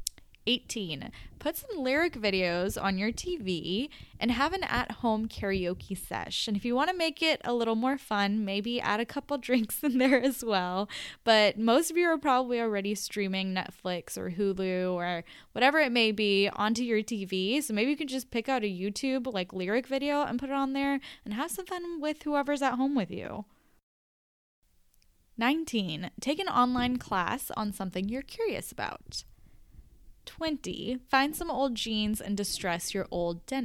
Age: 10-29